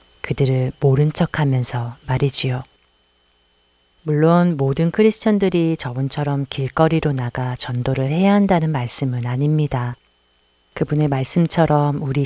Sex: female